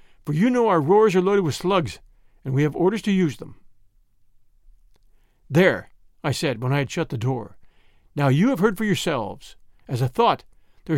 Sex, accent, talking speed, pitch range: male, American, 190 wpm, 135-200 Hz